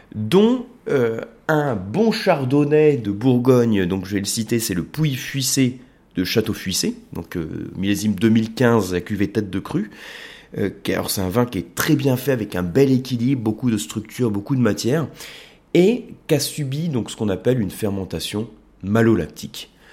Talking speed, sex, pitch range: 175 wpm, male, 105-135 Hz